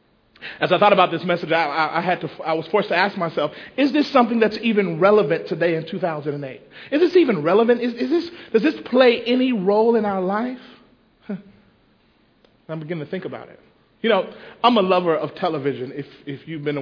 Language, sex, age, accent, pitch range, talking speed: English, male, 40-59, American, 170-240 Hz, 210 wpm